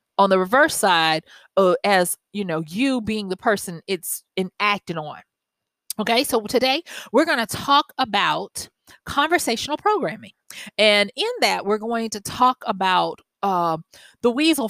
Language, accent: English, American